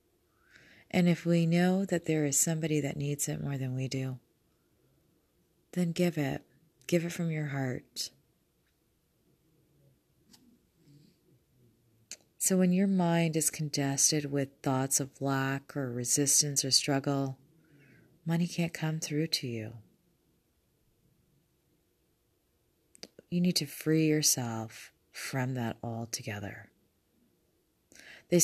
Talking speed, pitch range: 110 wpm, 130-165 Hz